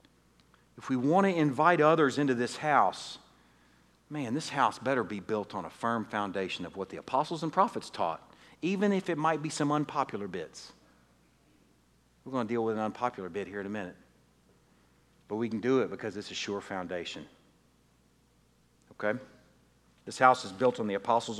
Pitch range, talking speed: 95-145 Hz, 180 wpm